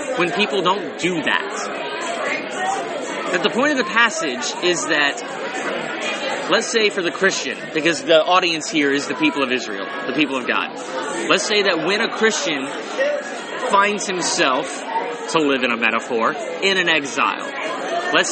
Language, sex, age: English, male, 30-49